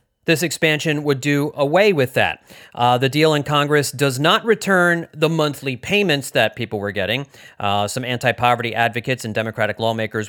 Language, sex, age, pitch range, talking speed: English, male, 40-59, 120-160 Hz, 170 wpm